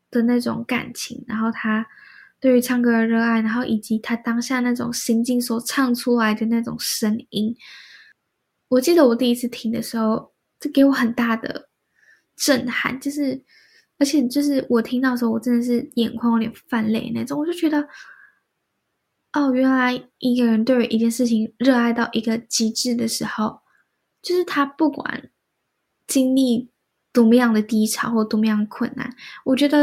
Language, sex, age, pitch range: Chinese, female, 10-29, 230-265 Hz